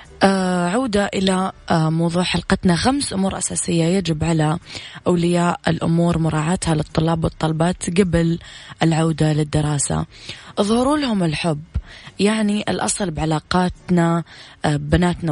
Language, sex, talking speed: English, female, 95 wpm